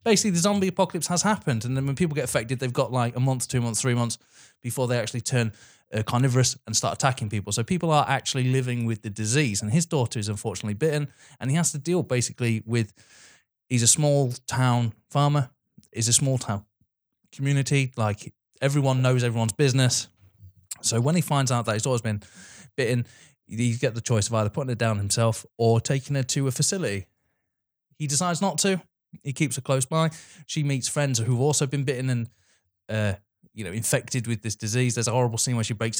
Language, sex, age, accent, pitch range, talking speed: English, male, 20-39, British, 115-145 Hz, 205 wpm